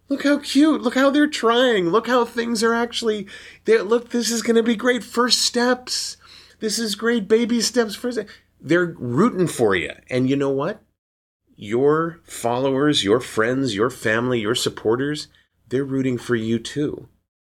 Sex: male